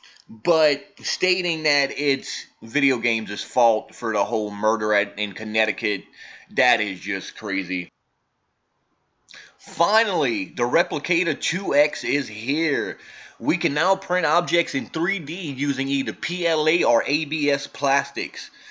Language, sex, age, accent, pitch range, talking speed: English, male, 20-39, American, 120-165 Hz, 115 wpm